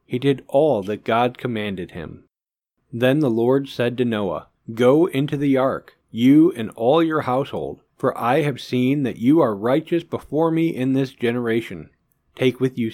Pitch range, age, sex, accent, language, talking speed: 115-145 Hz, 40-59, male, American, English, 175 wpm